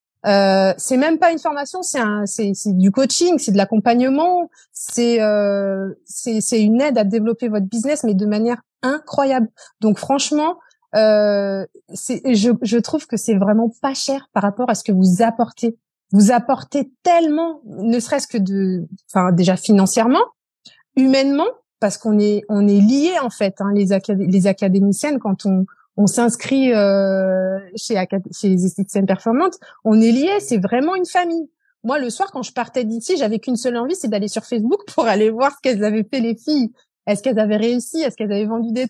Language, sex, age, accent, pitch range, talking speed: French, female, 20-39, French, 205-265 Hz, 175 wpm